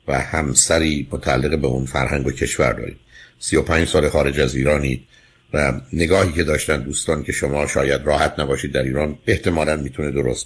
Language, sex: Persian, male